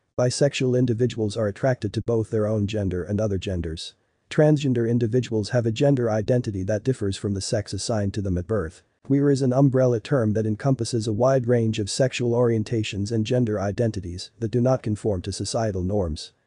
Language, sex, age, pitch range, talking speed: English, male, 40-59, 105-125 Hz, 185 wpm